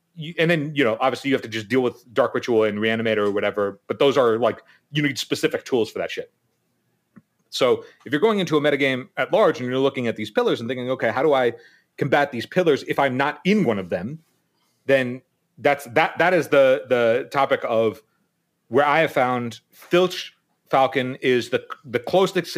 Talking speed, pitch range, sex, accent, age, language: 215 wpm, 115-160 Hz, male, American, 30-49, English